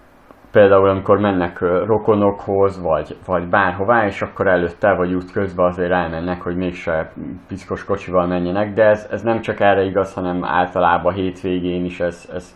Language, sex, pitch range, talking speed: Hungarian, male, 90-105 Hz, 160 wpm